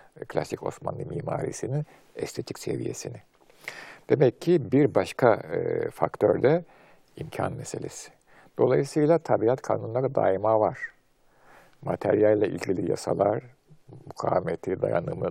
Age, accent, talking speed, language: 50-69, native, 95 wpm, Turkish